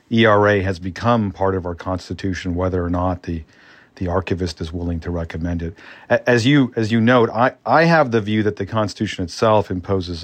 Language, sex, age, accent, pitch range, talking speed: English, male, 40-59, American, 90-115 Hz, 205 wpm